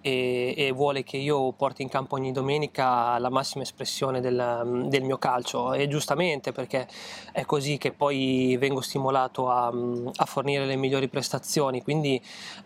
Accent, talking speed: native, 155 wpm